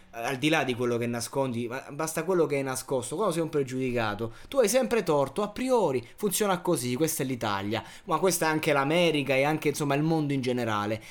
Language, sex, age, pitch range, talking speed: Italian, male, 20-39, 120-150 Hz, 210 wpm